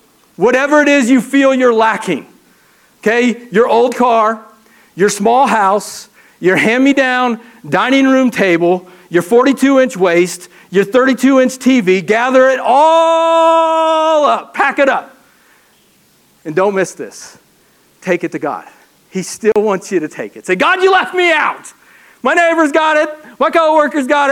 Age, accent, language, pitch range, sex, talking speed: 40-59, American, English, 175-270 Hz, male, 150 wpm